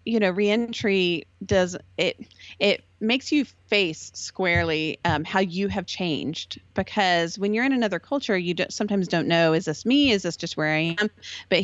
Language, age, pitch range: English, 30-49, 160-205 Hz